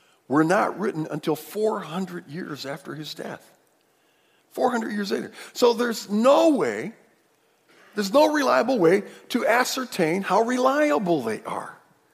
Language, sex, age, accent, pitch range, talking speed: English, male, 50-69, American, 130-205 Hz, 130 wpm